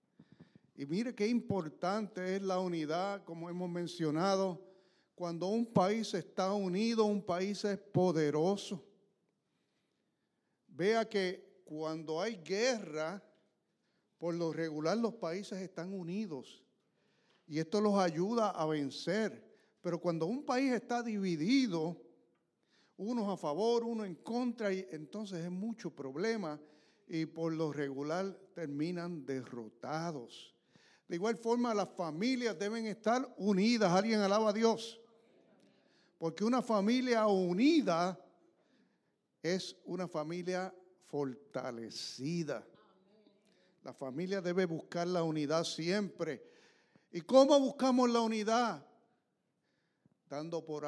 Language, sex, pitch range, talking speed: English, male, 170-225 Hz, 110 wpm